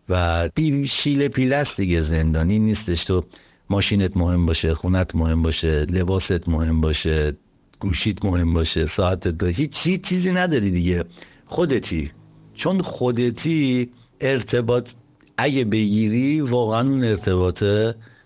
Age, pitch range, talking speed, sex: 60-79, 85-110 Hz, 110 wpm, male